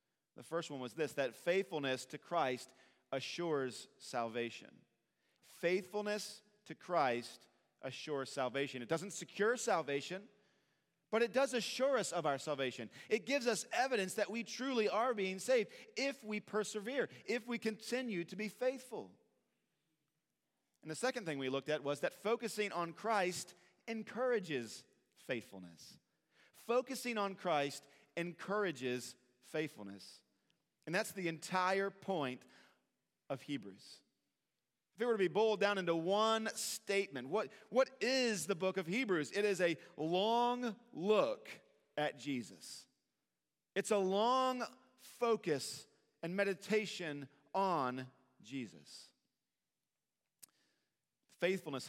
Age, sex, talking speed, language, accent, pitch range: 40-59, male, 125 wpm, English, American, 140-215 Hz